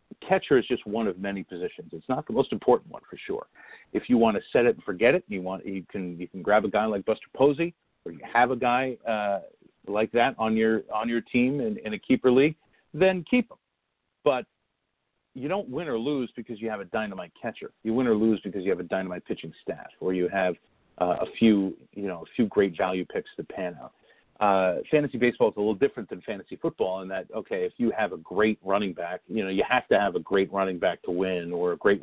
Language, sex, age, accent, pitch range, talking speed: English, male, 40-59, American, 100-150 Hz, 245 wpm